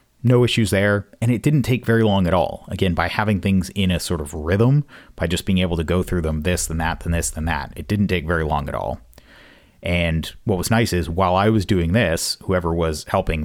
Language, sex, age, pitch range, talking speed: English, male, 30-49, 80-95 Hz, 245 wpm